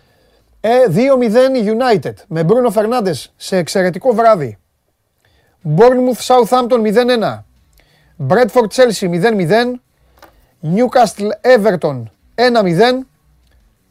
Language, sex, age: Greek, male, 30-49